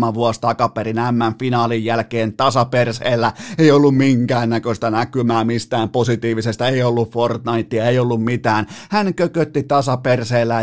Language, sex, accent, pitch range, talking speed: Finnish, male, native, 115-160 Hz, 115 wpm